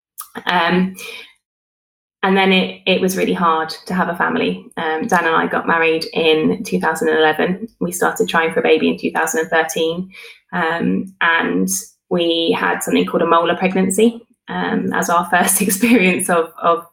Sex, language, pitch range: female, English, 165-220 Hz